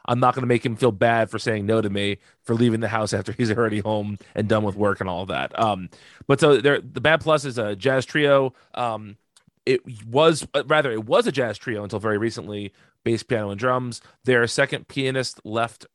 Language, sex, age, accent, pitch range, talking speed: English, male, 30-49, American, 105-130 Hz, 220 wpm